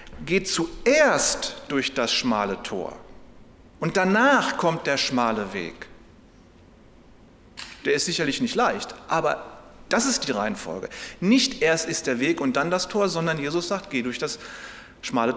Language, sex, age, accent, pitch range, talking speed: German, male, 40-59, German, 165-220 Hz, 150 wpm